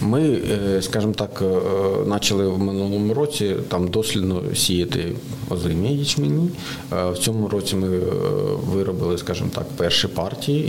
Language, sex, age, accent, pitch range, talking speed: Ukrainian, male, 40-59, native, 95-120 Hz, 110 wpm